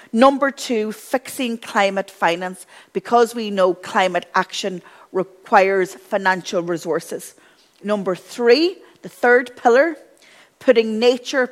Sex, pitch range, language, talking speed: female, 185-235 Hz, English, 105 wpm